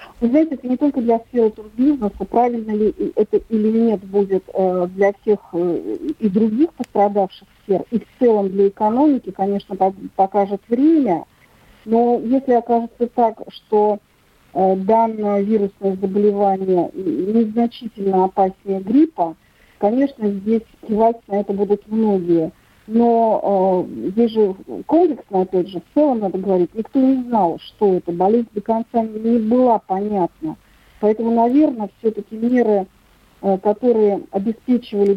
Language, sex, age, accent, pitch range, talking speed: Russian, female, 50-69, native, 195-230 Hz, 130 wpm